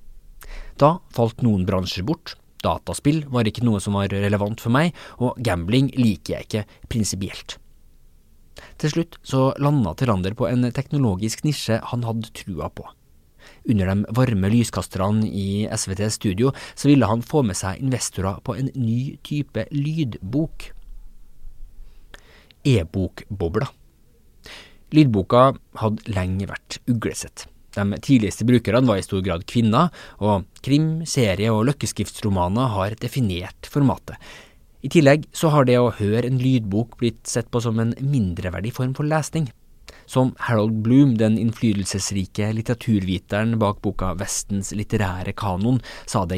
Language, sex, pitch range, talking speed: English, male, 95-130 Hz, 130 wpm